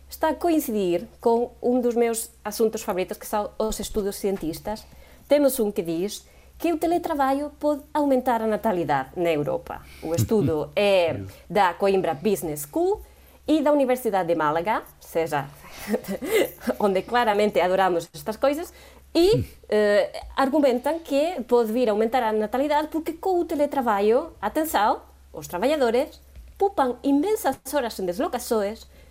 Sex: female